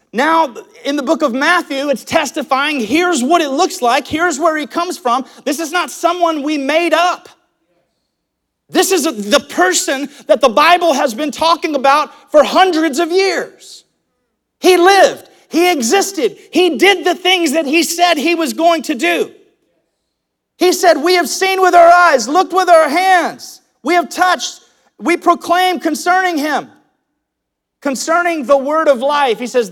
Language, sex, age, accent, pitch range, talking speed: English, male, 40-59, American, 260-345 Hz, 165 wpm